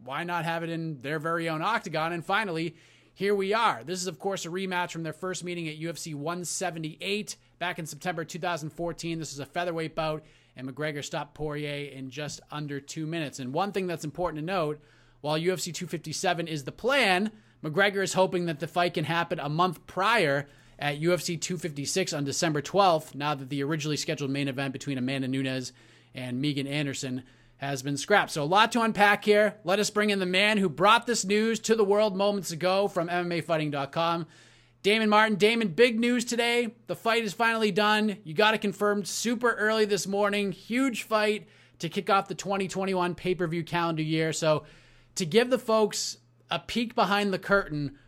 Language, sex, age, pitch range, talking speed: English, male, 30-49, 150-200 Hz, 190 wpm